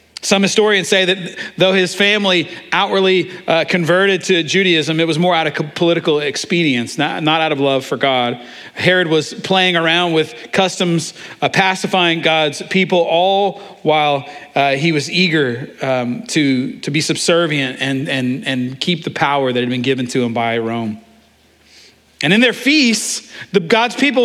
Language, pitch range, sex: English, 135-195 Hz, male